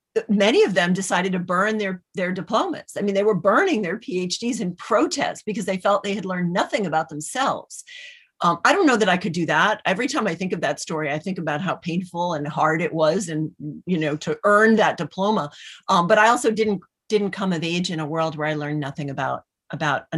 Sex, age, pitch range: female, 40-59, 155-205 Hz